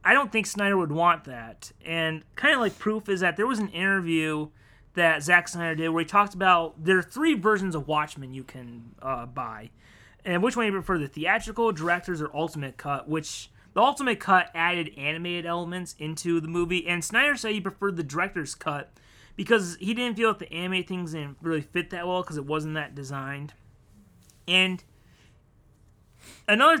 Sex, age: male, 30-49